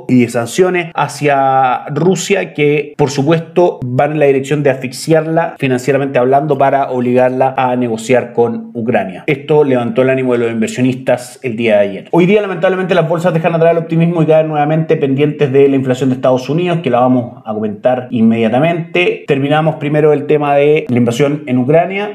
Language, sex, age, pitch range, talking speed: Spanish, male, 30-49, 125-155 Hz, 180 wpm